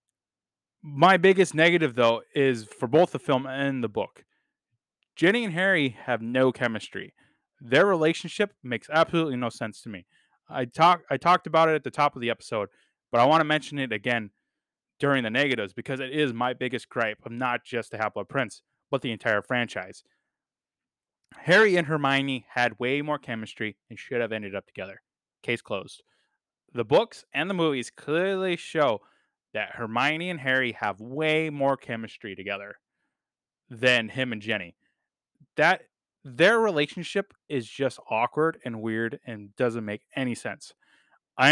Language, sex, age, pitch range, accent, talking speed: English, male, 20-39, 115-155 Hz, American, 160 wpm